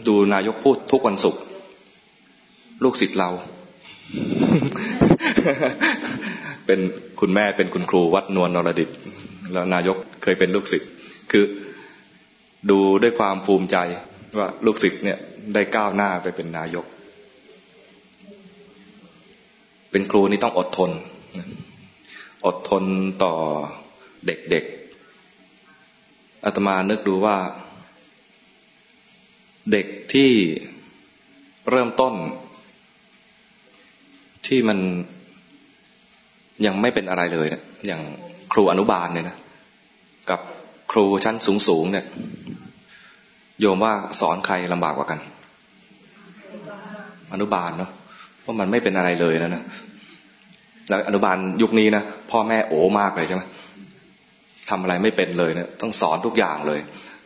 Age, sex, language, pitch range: 20-39, male, English, 90-115 Hz